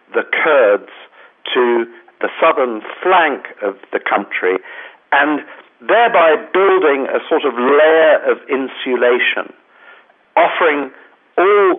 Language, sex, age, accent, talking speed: English, male, 50-69, British, 100 wpm